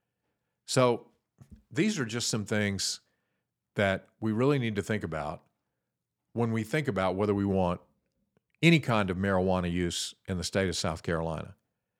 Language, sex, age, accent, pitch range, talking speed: English, male, 50-69, American, 95-115 Hz, 155 wpm